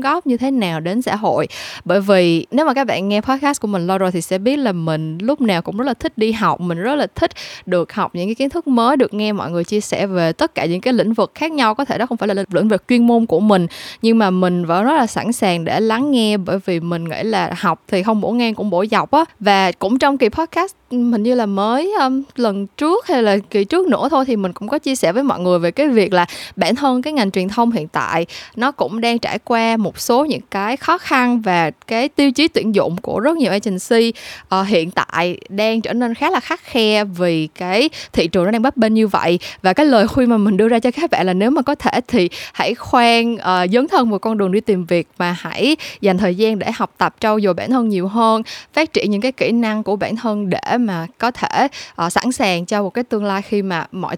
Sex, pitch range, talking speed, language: female, 190-250 Hz, 270 wpm, Vietnamese